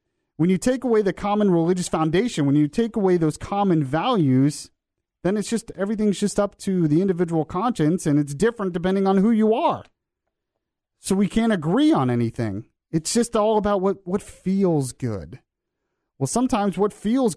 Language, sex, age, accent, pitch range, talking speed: English, male, 30-49, American, 145-195 Hz, 175 wpm